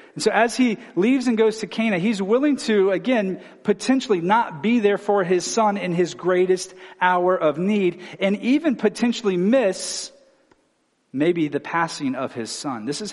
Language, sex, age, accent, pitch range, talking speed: English, male, 40-59, American, 160-225 Hz, 175 wpm